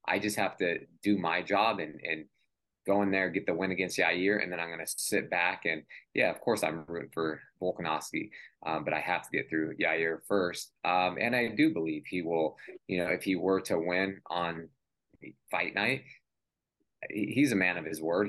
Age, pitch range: 20-39, 90-110 Hz